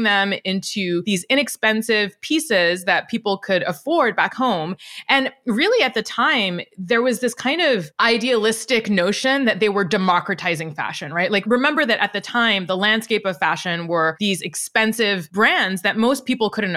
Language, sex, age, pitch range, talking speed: English, female, 20-39, 185-245 Hz, 170 wpm